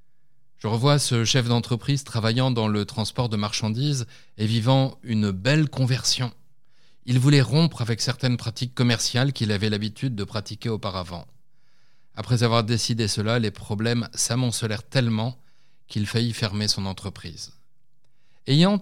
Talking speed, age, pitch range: 135 wpm, 30-49, 105-135 Hz